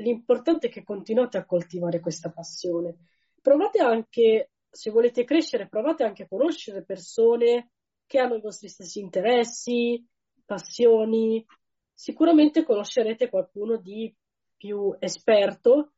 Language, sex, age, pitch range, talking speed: Italian, female, 20-39, 185-240 Hz, 115 wpm